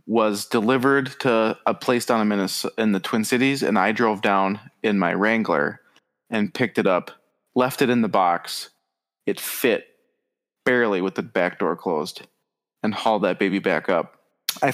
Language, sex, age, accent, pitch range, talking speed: English, male, 20-39, American, 110-140 Hz, 170 wpm